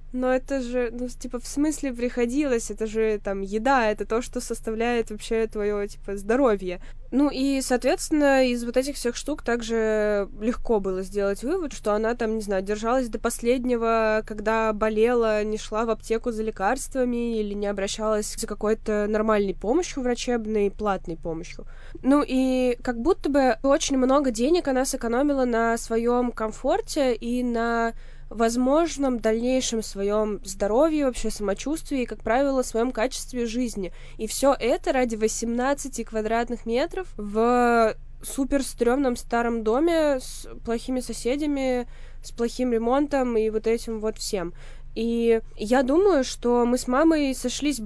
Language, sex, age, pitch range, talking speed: Russian, female, 20-39, 220-260 Hz, 145 wpm